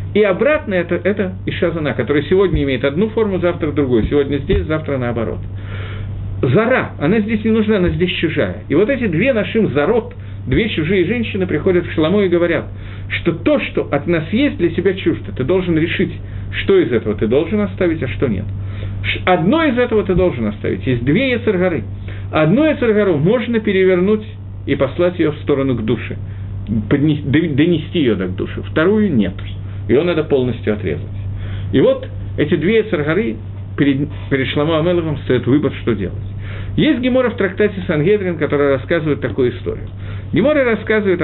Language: Russian